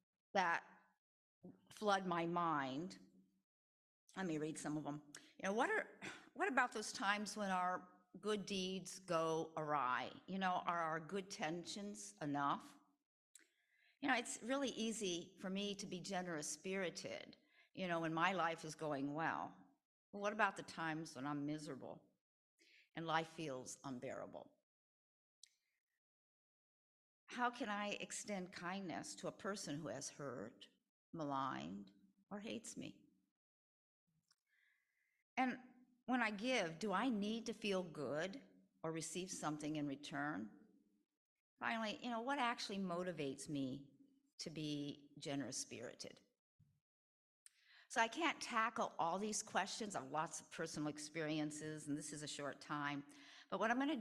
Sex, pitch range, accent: female, 150-215 Hz, American